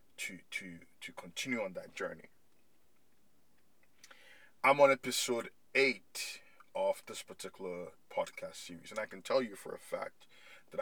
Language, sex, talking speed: English, male, 140 wpm